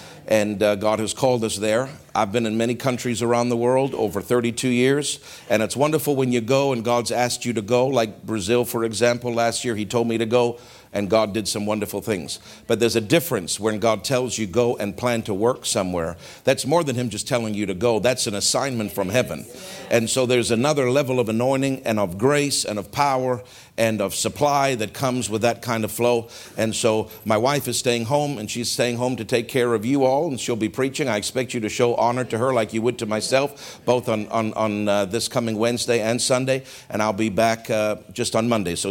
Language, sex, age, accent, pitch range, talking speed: English, male, 50-69, American, 110-130 Hz, 235 wpm